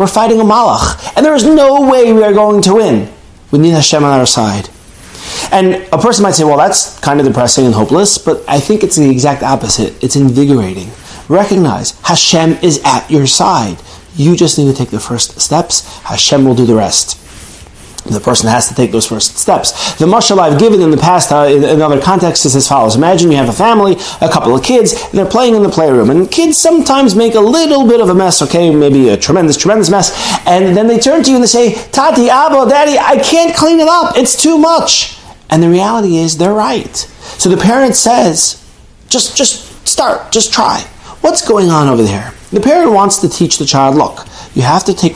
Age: 30-49